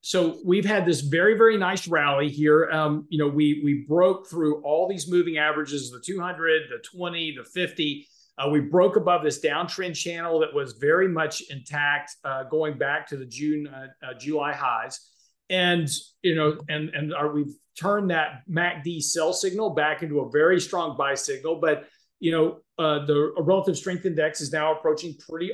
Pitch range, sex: 150-185 Hz, male